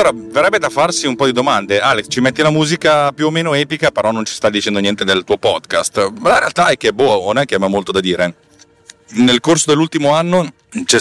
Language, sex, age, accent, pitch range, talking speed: Italian, male, 40-59, native, 95-125 Hz, 240 wpm